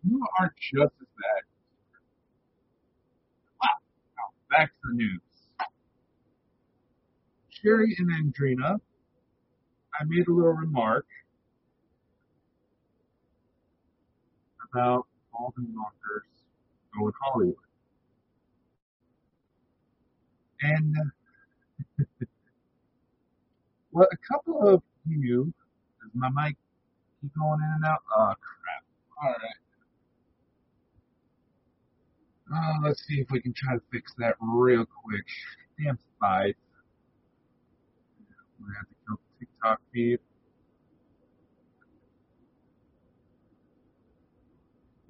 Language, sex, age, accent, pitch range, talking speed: English, male, 50-69, American, 125-180 Hz, 90 wpm